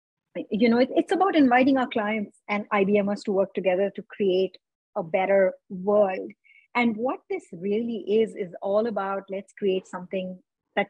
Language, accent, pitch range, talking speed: English, Indian, 190-240 Hz, 160 wpm